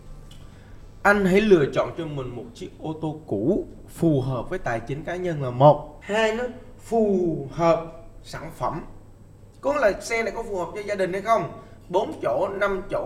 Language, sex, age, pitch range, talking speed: Vietnamese, male, 20-39, 120-185 Hz, 195 wpm